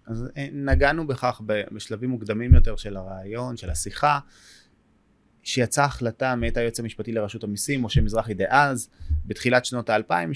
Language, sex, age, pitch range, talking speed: Hebrew, male, 30-49, 115-145 Hz, 135 wpm